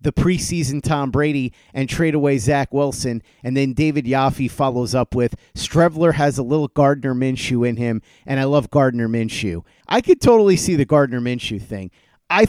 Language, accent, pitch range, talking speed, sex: English, American, 125-150 Hz, 185 wpm, male